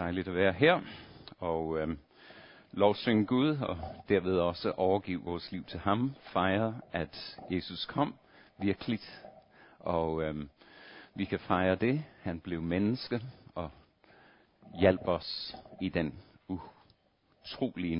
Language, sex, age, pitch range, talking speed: Danish, male, 60-79, 85-110 Hz, 120 wpm